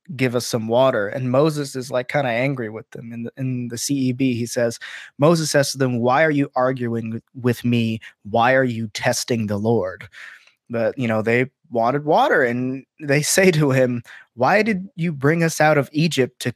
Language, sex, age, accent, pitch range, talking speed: English, male, 20-39, American, 120-150 Hz, 205 wpm